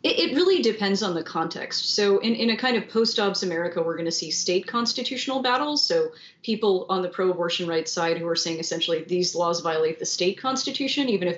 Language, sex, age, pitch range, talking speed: English, female, 30-49, 165-215 Hz, 210 wpm